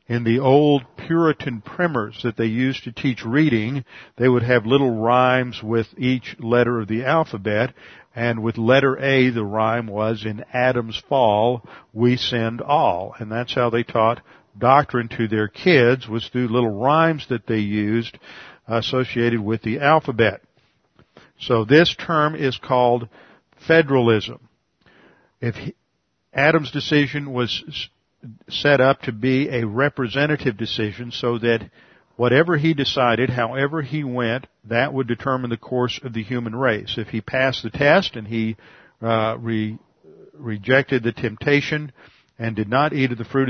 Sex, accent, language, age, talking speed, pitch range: male, American, English, 50-69, 150 wpm, 115-135 Hz